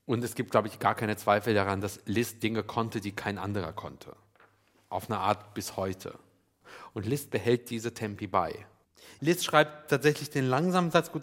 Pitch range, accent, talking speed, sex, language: 105-130 Hz, German, 185 wpm, male, German